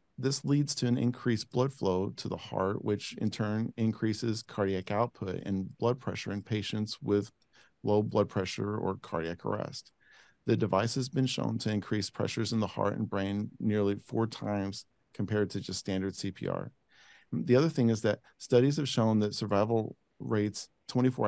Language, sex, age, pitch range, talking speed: English, male, 40-59, 100-120 Hz, 170 wpm